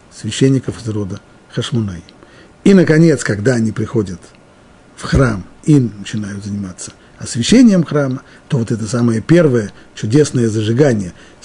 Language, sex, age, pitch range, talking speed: Russian, male, 50-69, 110-145 Hz, 120 wpm